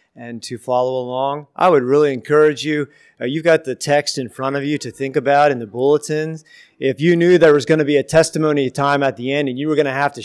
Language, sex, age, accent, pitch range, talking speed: English, male, 30-49, American, 125-150 Hz, 265 wpm